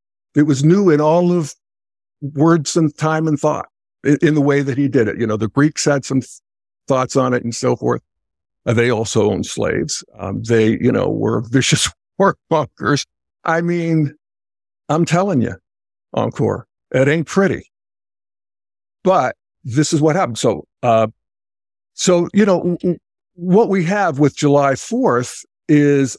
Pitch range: 110-150 Hz